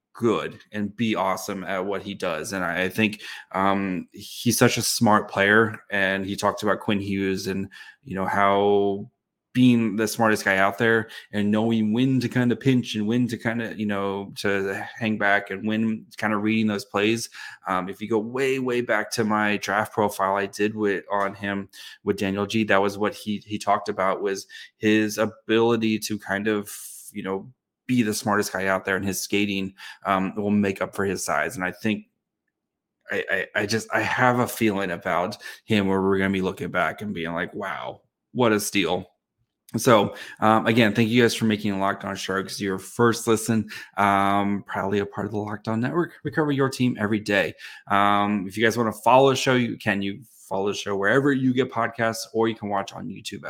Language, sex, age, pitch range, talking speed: English, male, 20-39, 100-115 Hz, 205 wpm